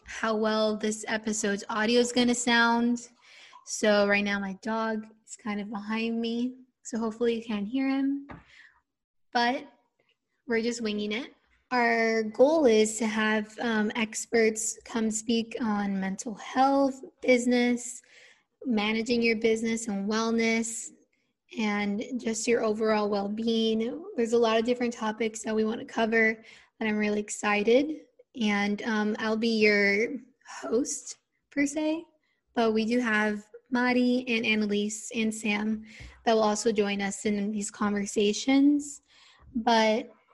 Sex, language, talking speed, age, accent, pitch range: female, English, 140 wpm, 20-39, American, 215-245 Hz